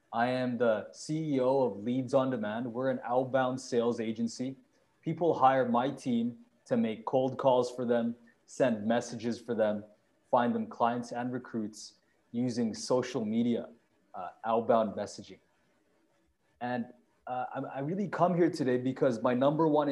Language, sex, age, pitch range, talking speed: English, male, 20-39, 115-135 Hz, 150 wpm